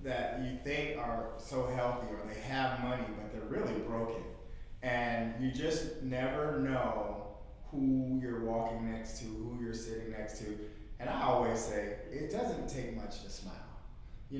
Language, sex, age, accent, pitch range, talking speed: English, male, 30-49, American, 115-130 Hz, 165 wpm